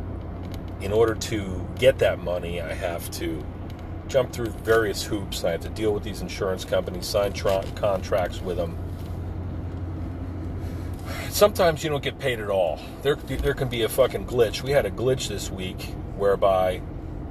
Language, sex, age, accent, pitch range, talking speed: English, male, 40-59, American, 85-105 Hz, 165 wpm